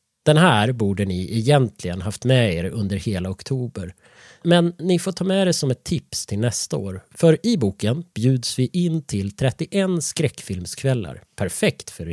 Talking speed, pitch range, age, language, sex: 170 wpm, 105-160 Hz, 30-49, Swedish, male